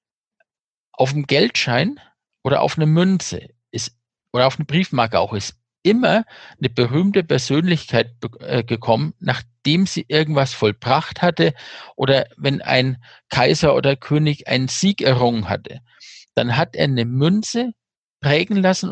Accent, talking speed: German, 130 wpm